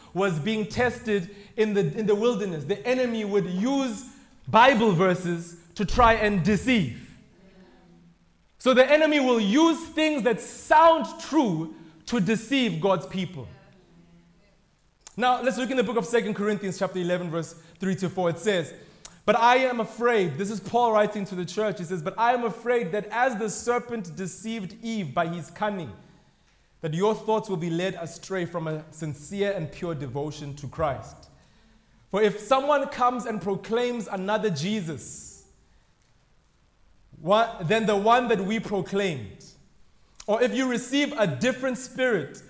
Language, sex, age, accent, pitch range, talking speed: English, male, 20-39, South African, 175-235 Hz, 155 wpm